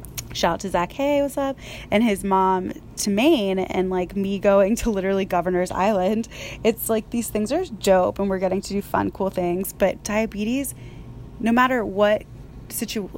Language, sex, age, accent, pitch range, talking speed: English, female, 20-39, American, 180-220 Hz, 180 wpm